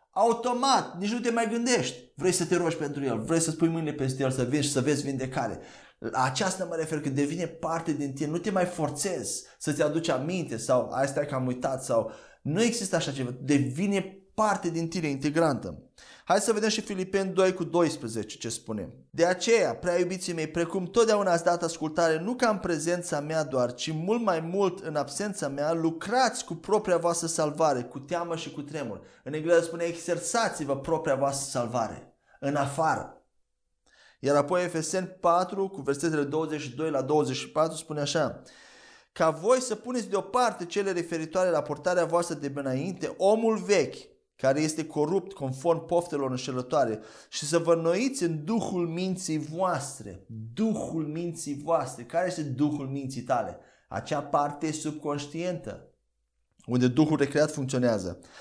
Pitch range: 145-180 Hz